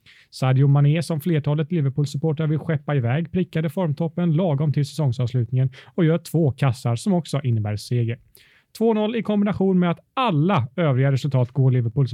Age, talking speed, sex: 30-49, 155 wpm, male